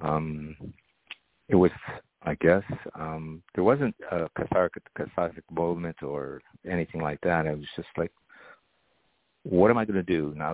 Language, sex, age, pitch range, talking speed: English, male, 50-69, 75-85 Hz, 155 wpm